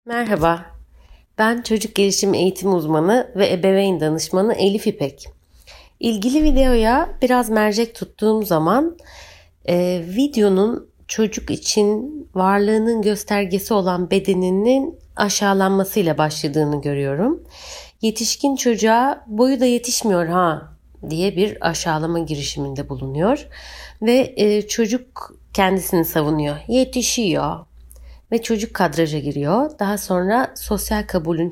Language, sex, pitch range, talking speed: Turkish, female, 160-230 Hz, 100 wpm